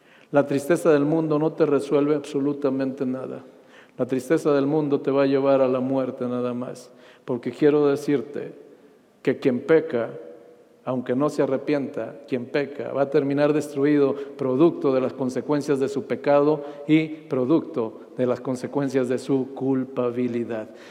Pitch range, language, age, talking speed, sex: 130-150 Hz, Spanish, 50-69, 150 wpm, male